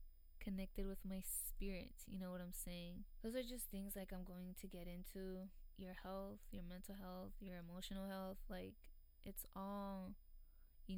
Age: 20-39